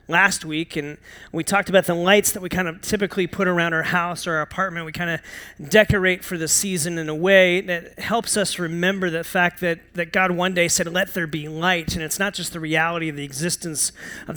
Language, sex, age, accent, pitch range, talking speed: English, male, 30-49, American, 160-190 Hz, 235 wpm